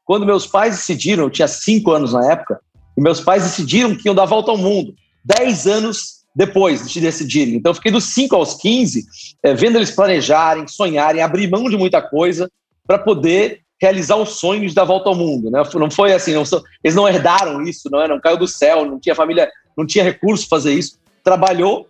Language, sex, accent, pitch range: Portuguese, male, Brazilian, 160-200 Hz